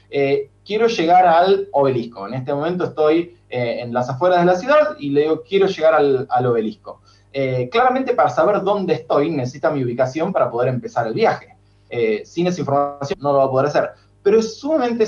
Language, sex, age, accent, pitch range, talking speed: Spanish, male, 20-39, Argentinian, 135-185 Hz, 205 wpm